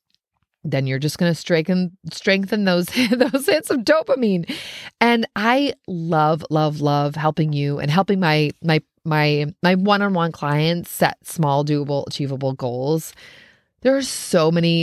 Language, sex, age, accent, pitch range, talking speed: English, female, 30-49, American, 160-205 Hz, 150 wpm